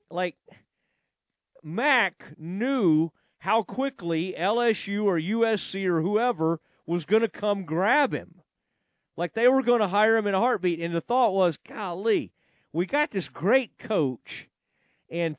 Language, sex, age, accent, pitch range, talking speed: English, male, 40-59, American, 165-215 Hz, 145 wpm